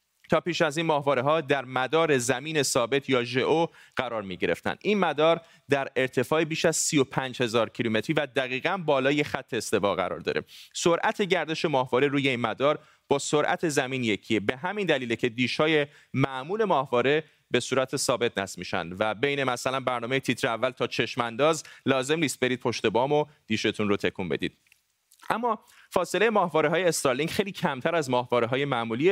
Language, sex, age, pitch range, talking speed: Persian, male, 30-49, 125-165 Hz, 170 wpm